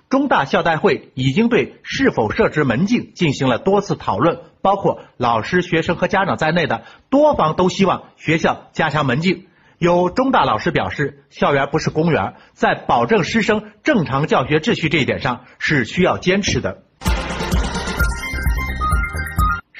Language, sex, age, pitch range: Chinese, male, 50-69, 120-200 Hz